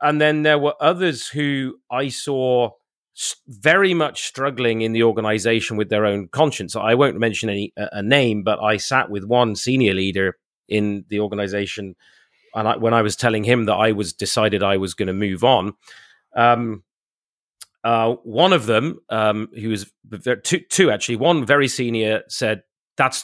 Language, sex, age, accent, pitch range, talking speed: English, male, 30-49, British, 110-140 Hz, 175 wpm